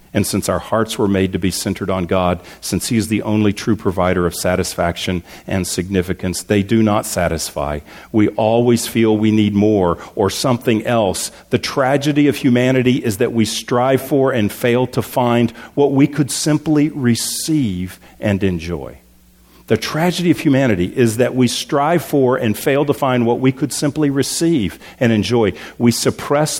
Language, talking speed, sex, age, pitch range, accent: English, 175 wpm, male, 50-69, 95-125 Hz, American